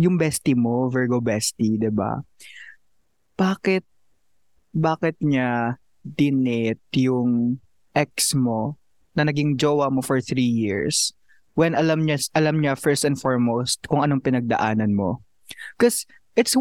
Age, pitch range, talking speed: 20-39, 125-160 Hz, 125 wpm